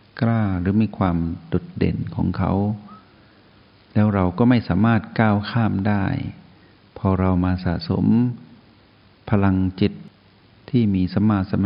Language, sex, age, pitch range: Thai, male, 60-79, 90-105 Hz